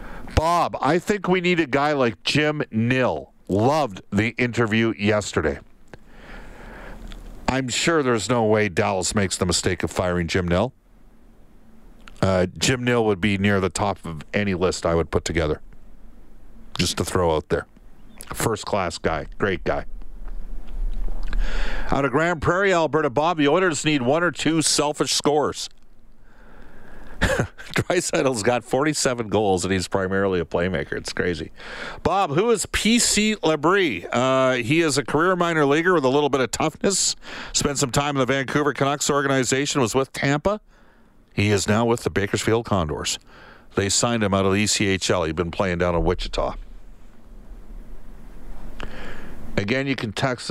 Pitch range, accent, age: 100-145 Hz, American, 50-69